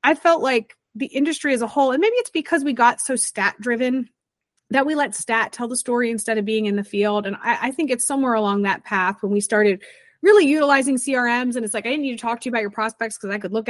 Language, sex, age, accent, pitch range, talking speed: English, female, 30-49, American, 205-265 Hz, 270 wpm